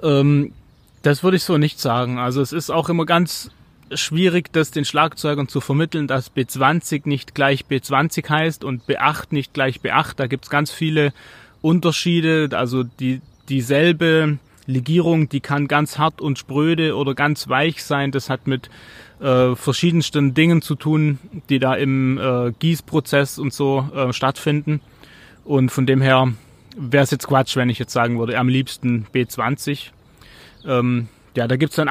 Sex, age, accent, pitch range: male, 30-49, German, 130-155 Hz